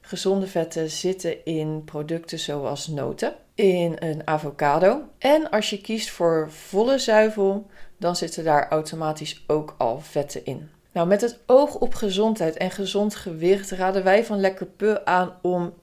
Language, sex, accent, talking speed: Dutch, female, Dutch, 155 wpm